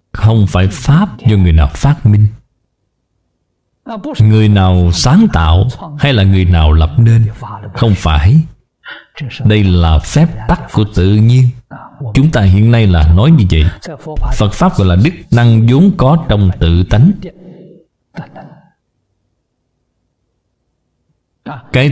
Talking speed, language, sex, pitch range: 130 wpm, Vietnamese, male, 95-135 Hz